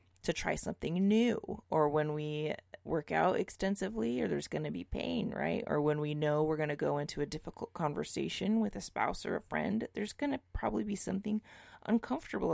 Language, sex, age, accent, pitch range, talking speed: English, female, 20-39, American, 145-195 Hz, 200 wpm